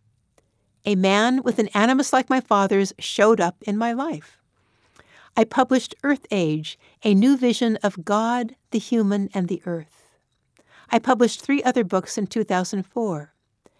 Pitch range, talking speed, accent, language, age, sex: 180-235 Hz, 150 wpm, American, English, 60-79, female